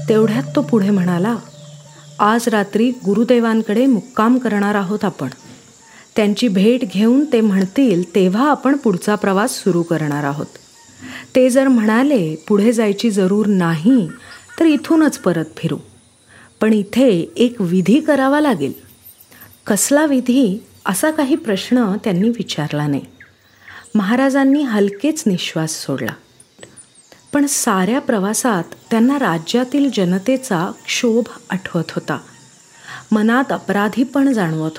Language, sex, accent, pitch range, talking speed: Marathi, female, native, 175-250 Hz, 110 wpm